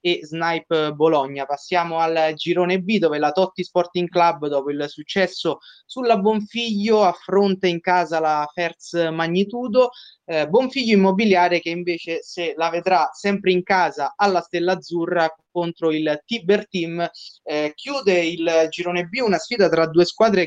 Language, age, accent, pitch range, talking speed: Italian, 20-39, native, 155-185 Hz, 150 wpm